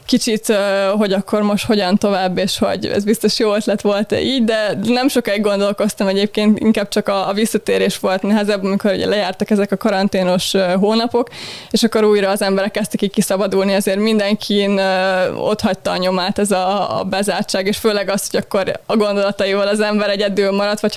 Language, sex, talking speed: Hungarian, female, 175 wpm